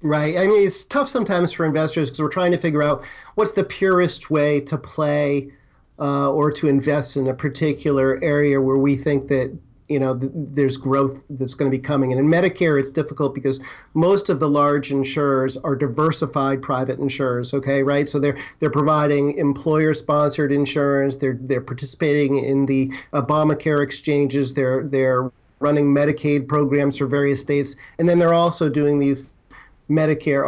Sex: male